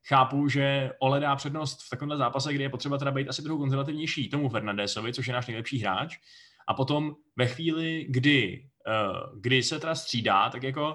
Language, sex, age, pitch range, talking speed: Czech, male, 20-39, 120-150 Hz, 185 wpm